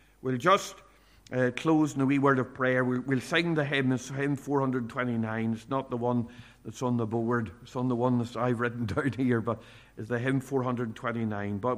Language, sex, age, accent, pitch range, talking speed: English, male, 50-69, Irish, 115-140 Hz, 210 wpm